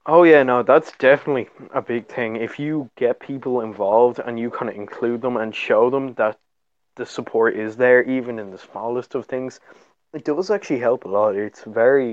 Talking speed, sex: 205 wpm, male